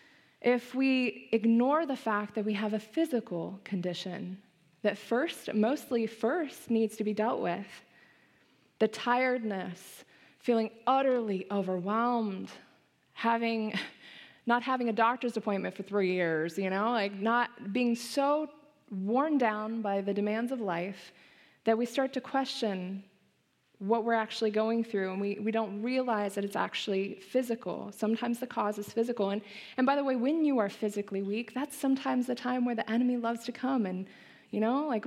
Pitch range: 205-250 Hz